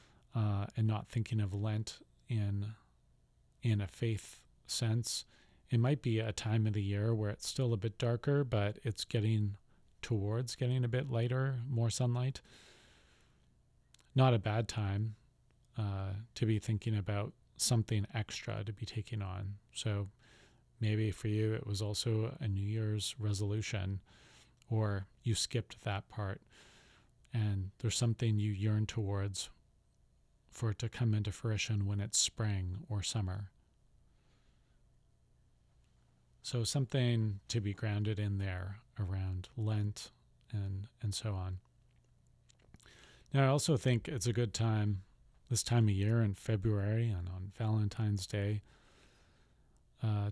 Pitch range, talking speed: 100-115 Hz, 135 wpm